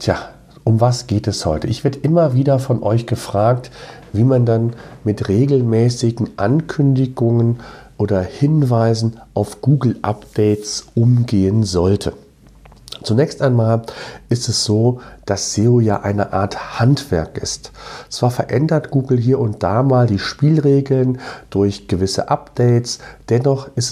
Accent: German